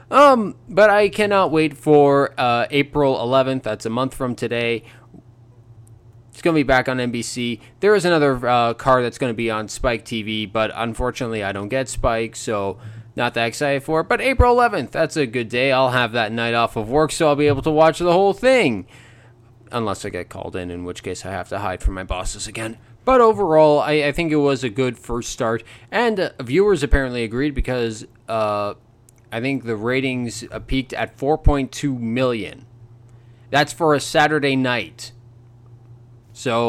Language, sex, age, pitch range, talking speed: English, male, 20-39, 115-155 Hz, 190 wpm